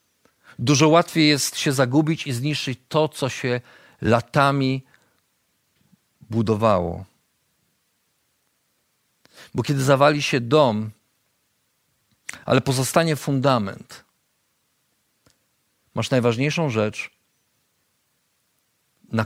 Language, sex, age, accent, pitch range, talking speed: Polish, male, 50-69, native, 105-130 Hz, 75 wpm